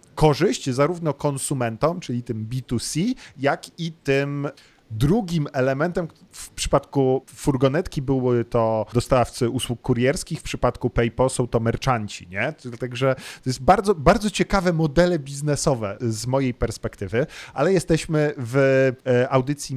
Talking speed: 125 wpm